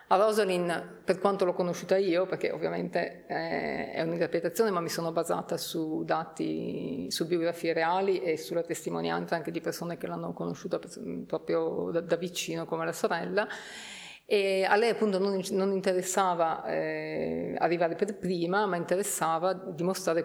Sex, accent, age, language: female, native, 30-49, Italian